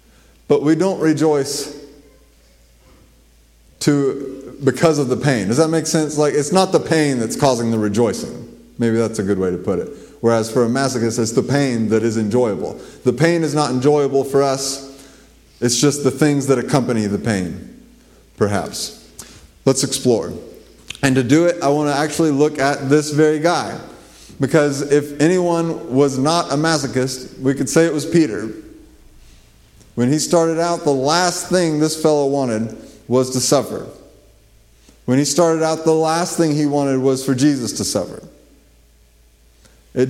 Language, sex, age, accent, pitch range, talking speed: English, male, 30-49, American, 125-155 Hz, 170 wpm